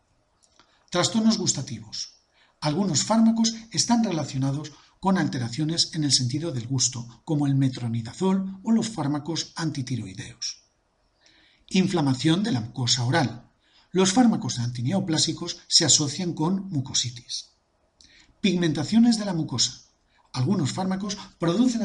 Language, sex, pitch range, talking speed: Spanish, male, 130-195 Hz, 105 wpm